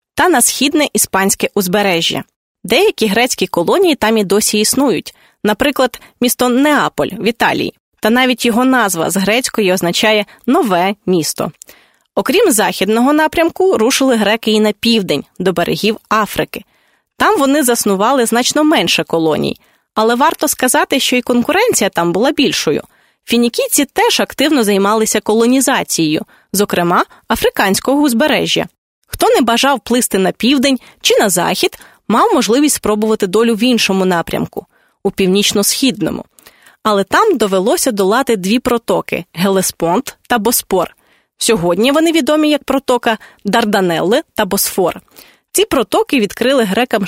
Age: 20-39